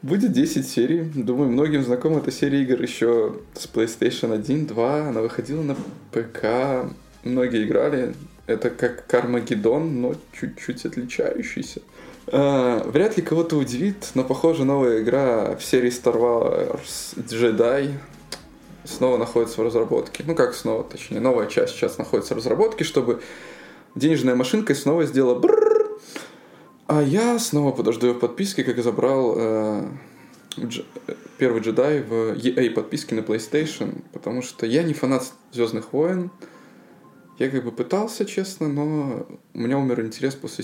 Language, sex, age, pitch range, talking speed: Russian, male, 20-39, 115-150 Hz, 140 wpm